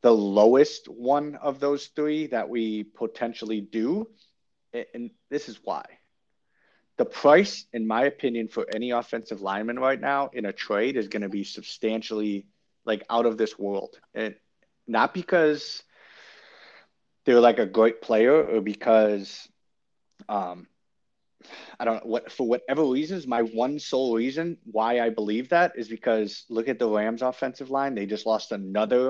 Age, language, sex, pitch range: 30-49, English, male, 110-135 Hz